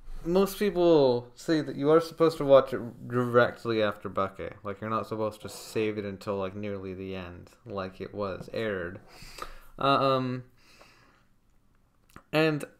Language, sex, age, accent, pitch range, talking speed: English, male, 20-39, American, 105-135 Hz, 145 wpm